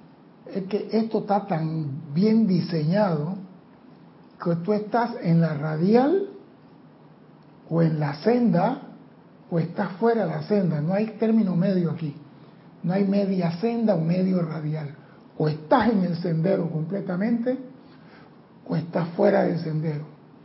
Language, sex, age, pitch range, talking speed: Spanish, male, 60-79, 165-220 Hz, 135 wpm